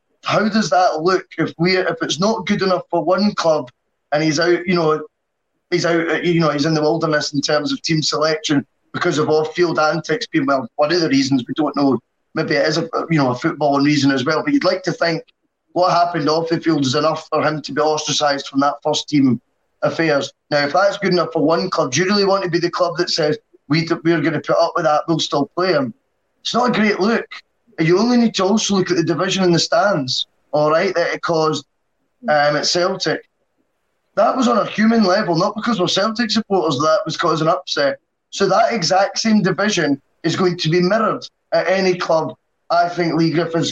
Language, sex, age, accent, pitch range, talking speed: English, male, 20-39, British, 155-185 Hz, 230 wpm